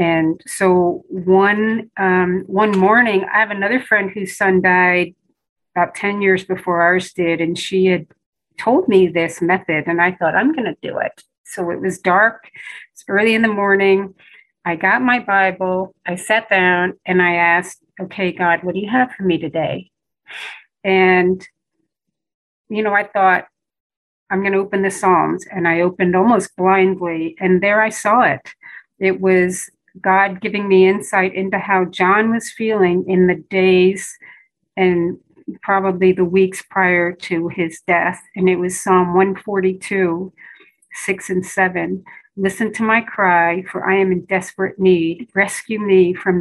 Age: 40-59